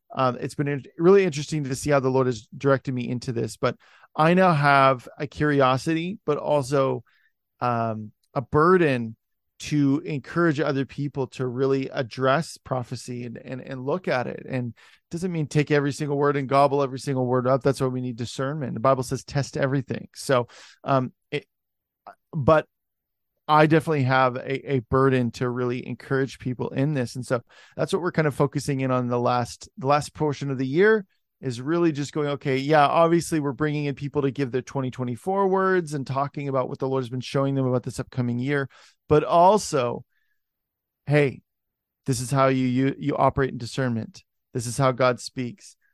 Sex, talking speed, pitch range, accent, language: male, 190 wpm, 125-150 Hz, American, English